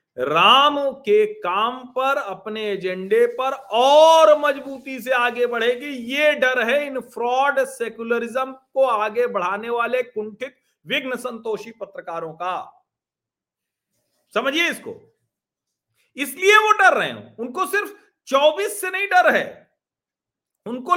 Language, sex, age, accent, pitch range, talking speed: Hindi, male, 40-59, native, 230-285 Hz, 115 wpm